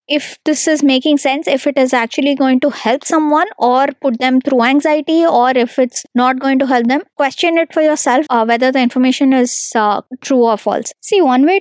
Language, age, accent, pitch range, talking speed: English, 20-39, Indian, 240-305 Hz, 215 wpm